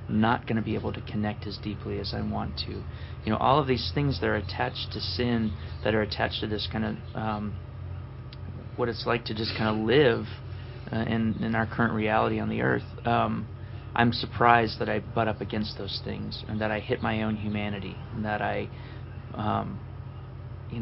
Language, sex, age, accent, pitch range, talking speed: English, male, 30-49, American, 105-115 Hz, 205 wpm